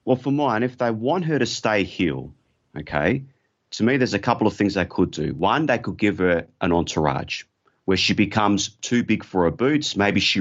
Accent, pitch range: Australian, 100-130 Hz